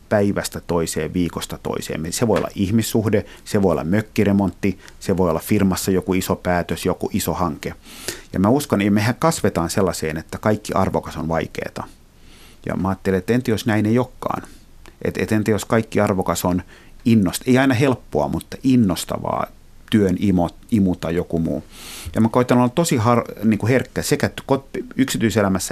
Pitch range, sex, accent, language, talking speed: 90-115 Hz, male, native, Finnish, 170 wpm